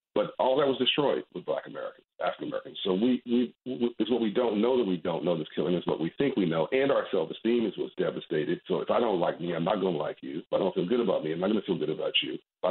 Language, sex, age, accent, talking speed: English, male, 50-69, American, 300 wpm